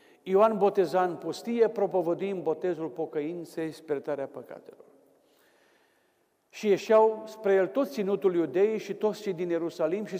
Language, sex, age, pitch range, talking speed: Romanian, male, 50-69, 155-195 Hz, 130 wpm